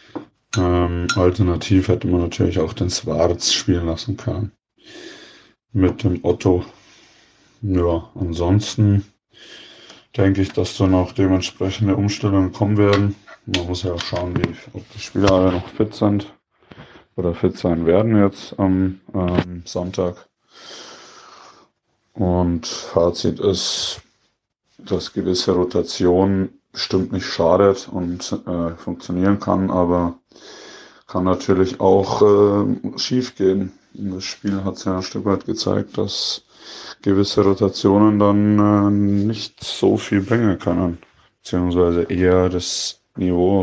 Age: 20-39